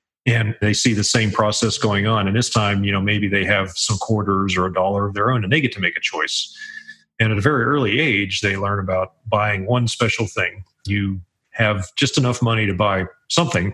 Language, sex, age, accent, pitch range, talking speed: English, male, 40-59, American, 100-120 Hz, 225 wpm